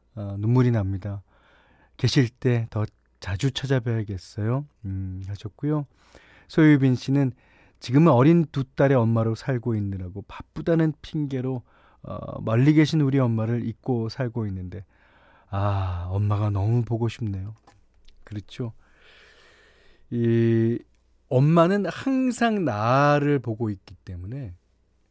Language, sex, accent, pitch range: Korean, male, native, 100-140 Hz